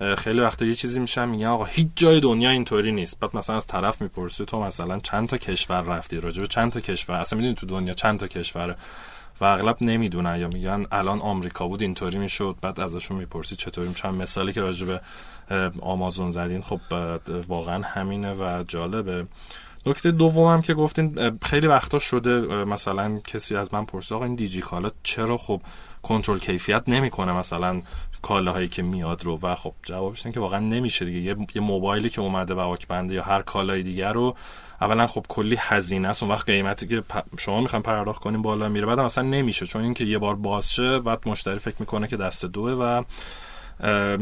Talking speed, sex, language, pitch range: 185 wpm, male, Persian, 95-115 Hz